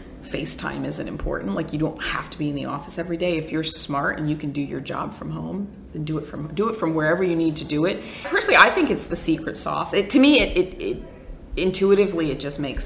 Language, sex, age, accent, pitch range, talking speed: English, female, 40-59, American, 140-180 Hz, 255 wpm